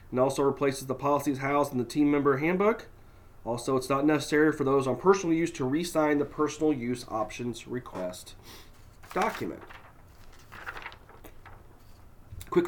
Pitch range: 115-160 Hz